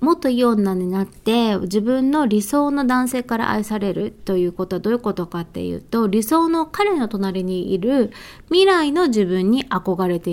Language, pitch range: Japanese, 190-260 Hz